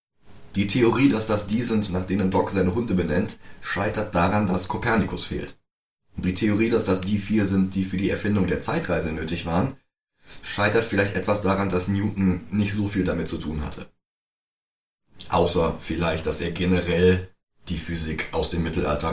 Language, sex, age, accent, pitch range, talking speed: German, male, 30-49, German, 90-105 Hz, 175 wpm